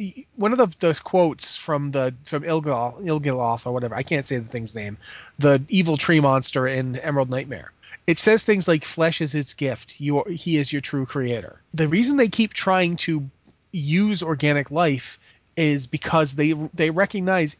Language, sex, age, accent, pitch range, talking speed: English, male, 30-49, American, 135-185 Hz, 190 wpm